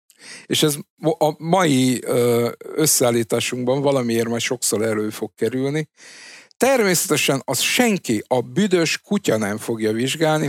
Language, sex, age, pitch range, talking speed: Hungarian, male, 50-69, 105-140 Hz, 115 wpm